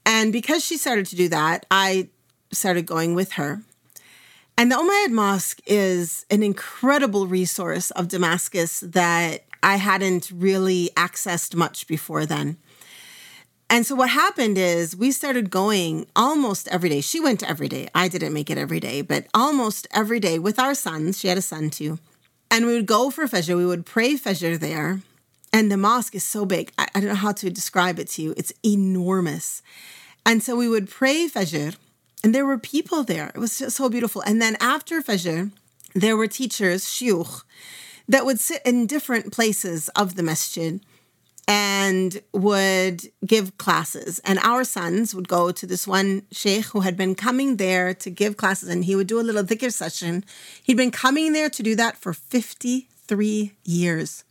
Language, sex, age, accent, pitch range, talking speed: English, female, 40-59, American, 180-230 Hz, 180 wpm